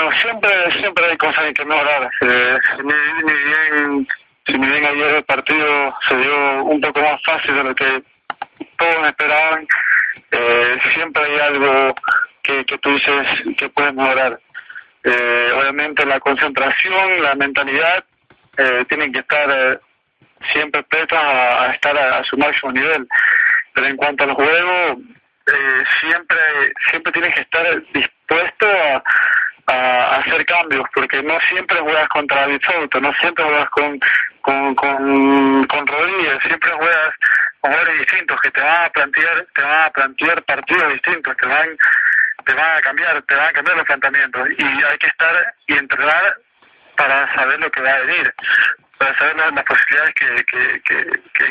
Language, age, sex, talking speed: Spanish, 40-59, male, 160 wpm